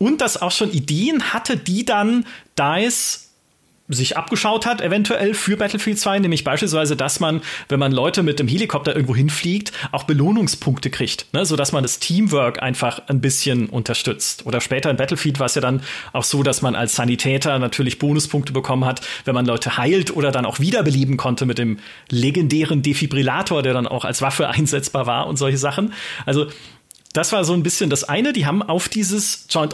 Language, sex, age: German, male, 30-49